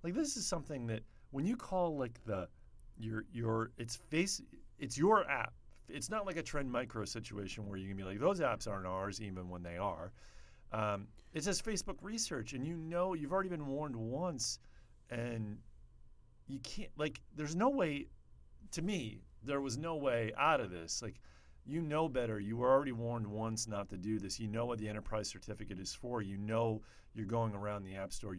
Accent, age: American, 40-59